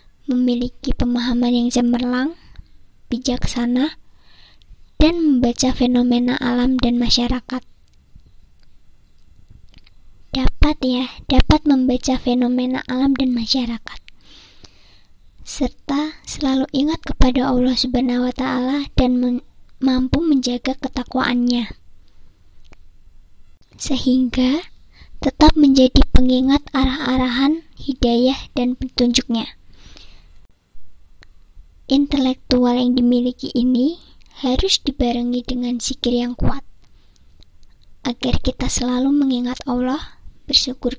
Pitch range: 240-265 Hz